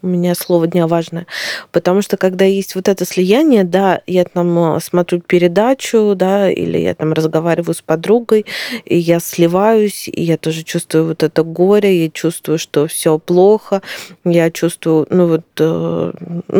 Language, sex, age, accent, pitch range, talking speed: Russian, female, 20-39, native, 170-200 Hz, 160 wpm